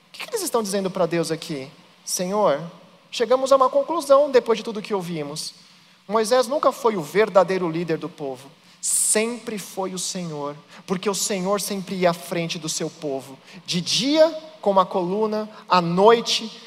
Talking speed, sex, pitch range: 175 wpm, male, 175-220 Hz